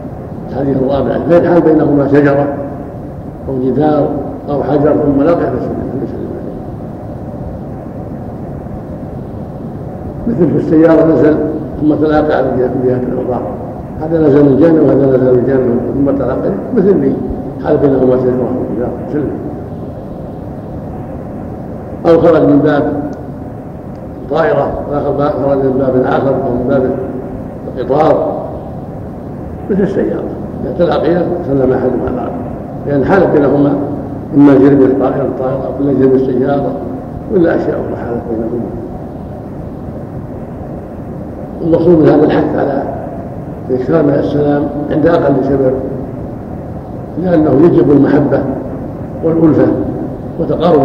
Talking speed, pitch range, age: 105 wpm, 130-145 Hz, 60-79